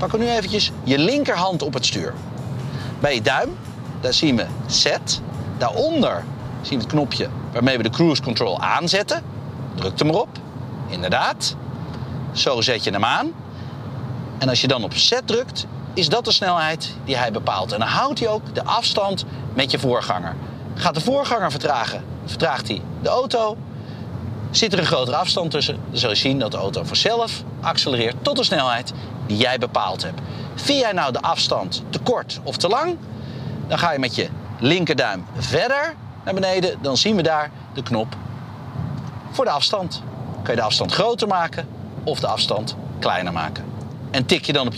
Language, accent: Dutch, Dutch